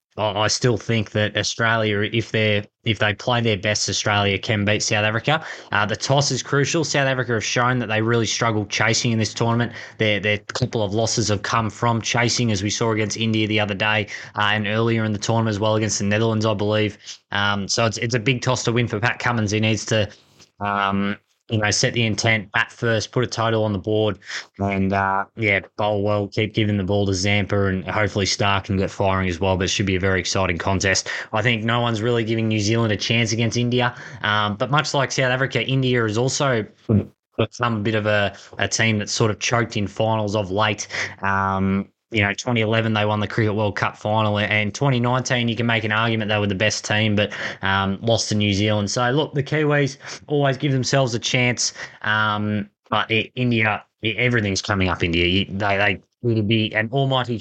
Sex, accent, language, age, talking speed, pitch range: male, Australian, English, 20-39, 220 wpm, 100-120 Hz